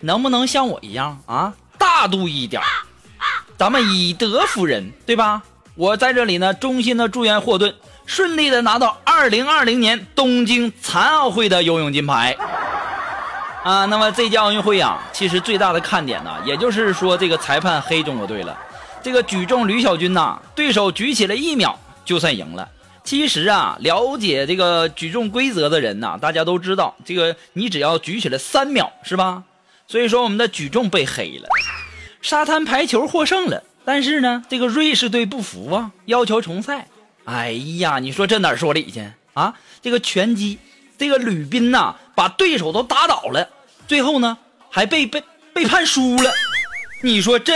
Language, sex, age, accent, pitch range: Chinese, male, 20-39, native, 185-270 Hz